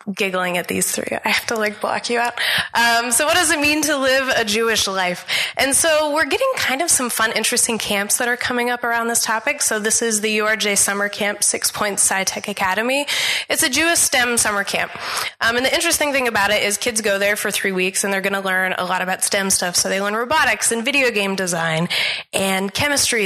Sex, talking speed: female, 235 wpm